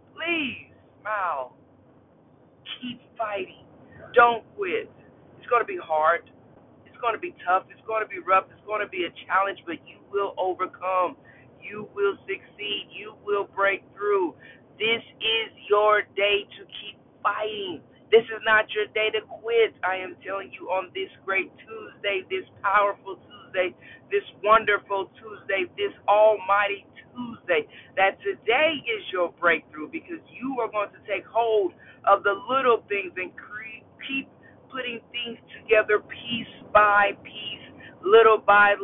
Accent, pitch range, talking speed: American, 200-245 Hz, 145 wpm